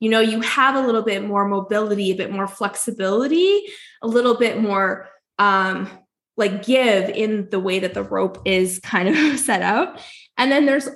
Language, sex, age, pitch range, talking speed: English, female, 20-39, 205-275 Hz, 185 wpm